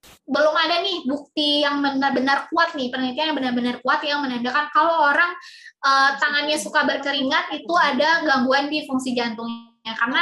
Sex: female